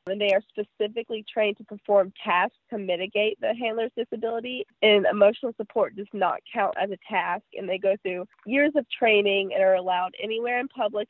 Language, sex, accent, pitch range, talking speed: English, female, American, 190-225 Hz, 190 wpm